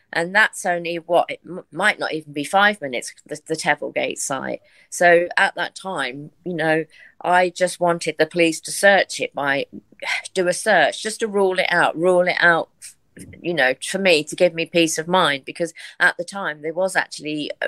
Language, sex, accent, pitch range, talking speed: English, female, British, 145-180 Hz, 195 wpm